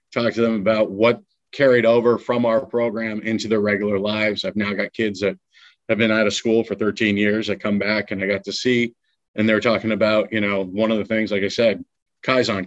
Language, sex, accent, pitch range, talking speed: English, male, American, 100-120 Hz, 235 wpm